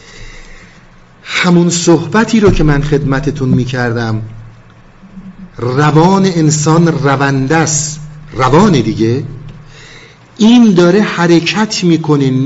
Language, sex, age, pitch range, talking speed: Persian, male, 50-69, 145-175 Hz, 75 wpm